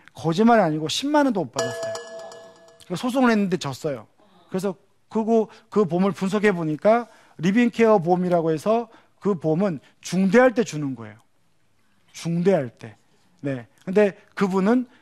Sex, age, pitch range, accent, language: male, 40-59, 155-230 Hz, native, Korean